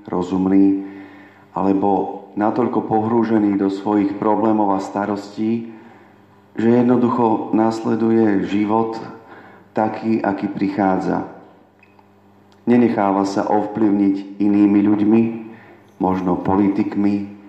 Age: 40-59